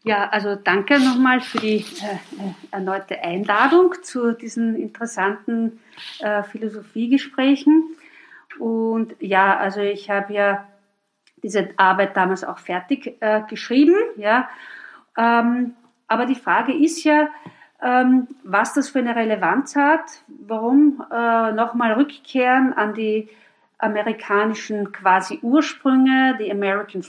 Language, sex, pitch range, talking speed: German, female, 205-265 Hz, 115 wpm